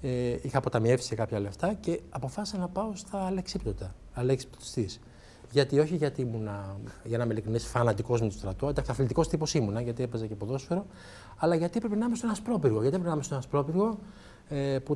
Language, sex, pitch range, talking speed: Greek, male, 115-170 Hz, 175 wpm